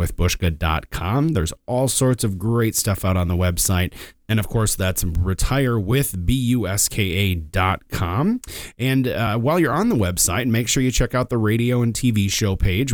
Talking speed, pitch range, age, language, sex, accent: 160 wpm, 90-125 Hz, 30-49, English, male, American